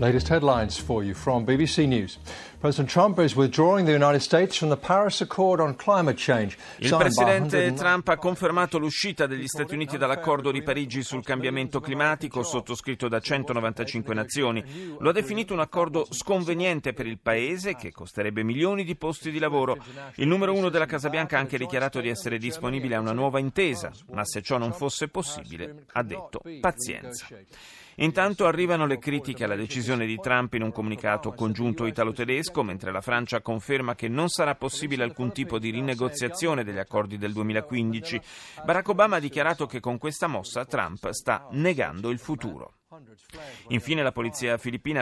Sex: male